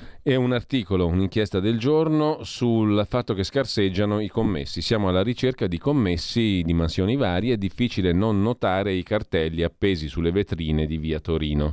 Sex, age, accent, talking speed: male, 40-59, native, 165 wpm